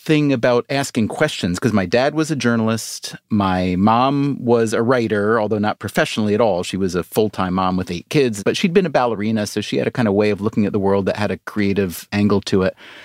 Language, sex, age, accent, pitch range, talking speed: English, male, 30-49, American, 105-130 Hz, 240 wpm